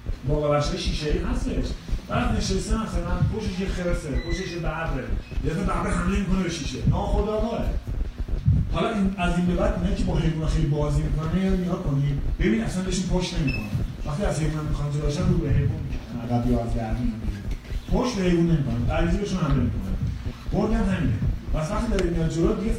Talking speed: 165 wpm